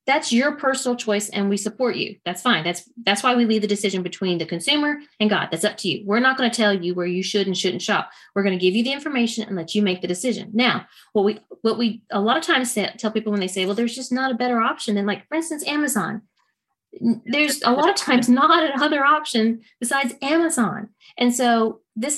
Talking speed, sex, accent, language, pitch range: 245 wpm, female, American, English, 195-245 Hz